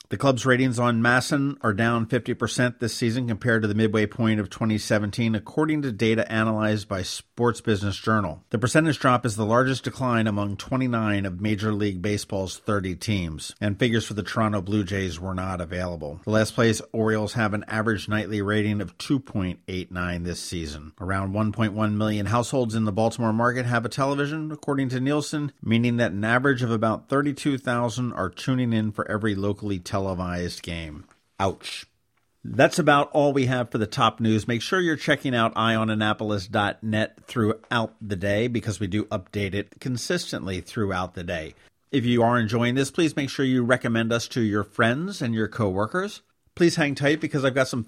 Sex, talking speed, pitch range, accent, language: male, 180 wpm, 105-125 Hz, American, English